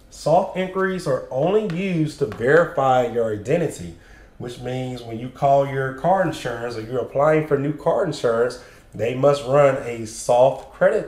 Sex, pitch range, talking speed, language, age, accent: male, 115-145 Hz, 160 wpm, English, 30-49, American